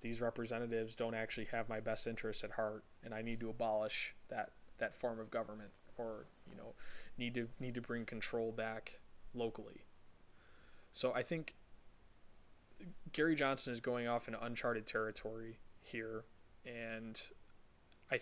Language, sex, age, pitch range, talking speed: English, male, 20-39, 110-120 Hz, 150 wpm